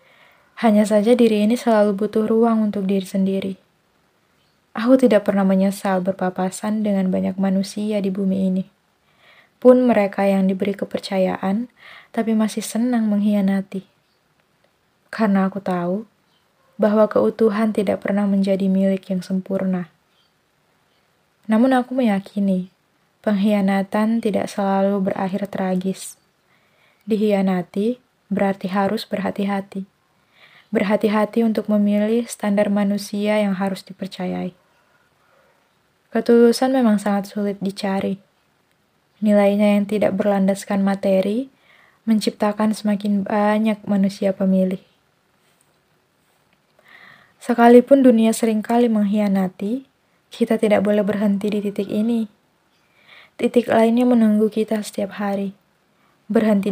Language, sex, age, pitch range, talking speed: Indonesian, female, 20-39, 195-220 Hz, 100 wpm